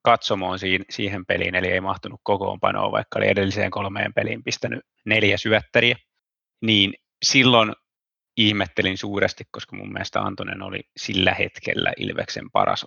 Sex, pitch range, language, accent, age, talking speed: male, 100-120 Hz, Finnish, native, 30-49, 135 wpm